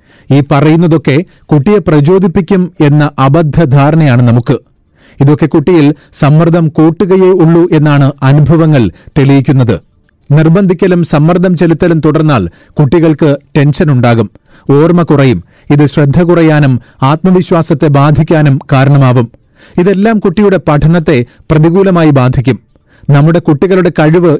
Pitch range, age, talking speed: 140-170 Hz, 40-59, 90 wpm